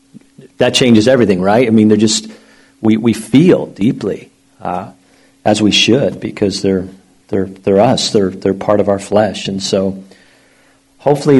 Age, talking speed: 50-69, 160 wpm